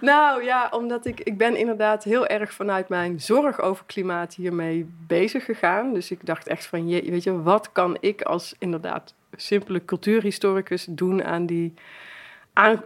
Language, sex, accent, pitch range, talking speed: Dutch, female, Dutch, 175-205 Hz, 170 wpm